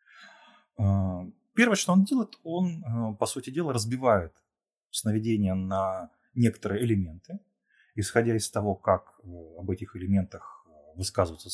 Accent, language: native, Russian